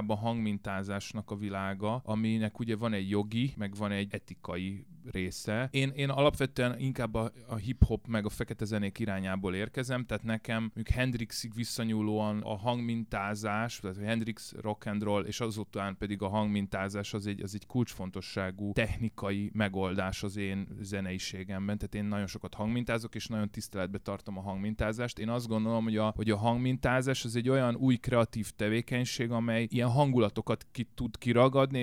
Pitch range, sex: 100-120 Hz, male